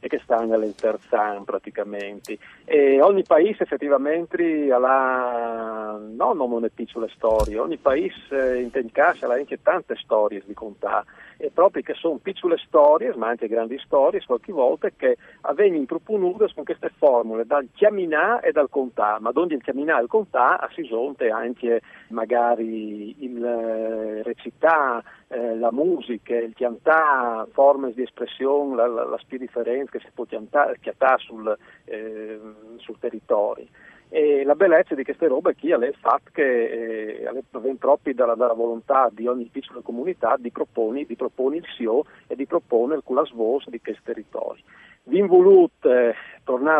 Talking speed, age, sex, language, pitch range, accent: 155 wpm, 50-69, male, Italian, 115-165 Hz, native